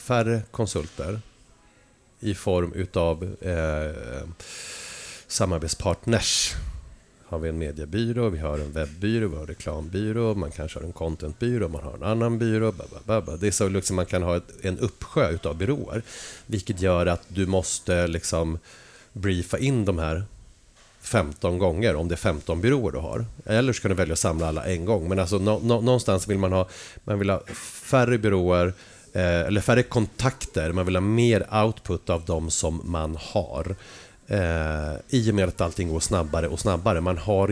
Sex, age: male, 30-49